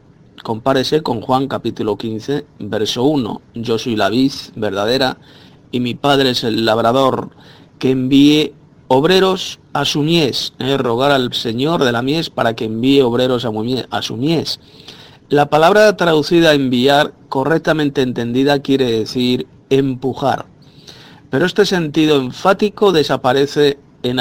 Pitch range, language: 120-145 Hz, Spanish